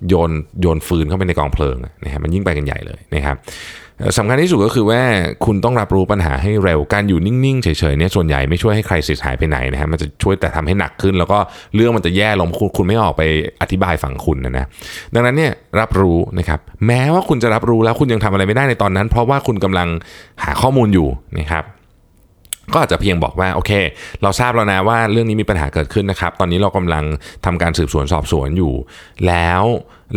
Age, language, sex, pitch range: 20-39, Thai, male, 80-110 Hz